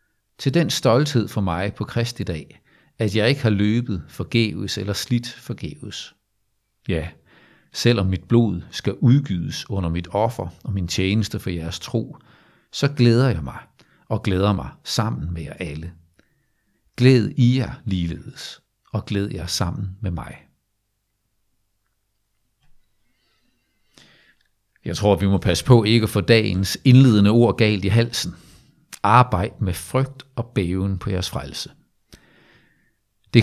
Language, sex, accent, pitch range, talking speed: Danish, male, native, 95-120 Hz, 140 wpm